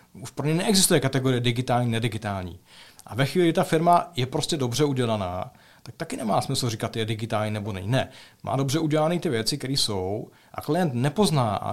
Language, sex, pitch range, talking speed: Czech, male, 115-160 Hz, 190 wpm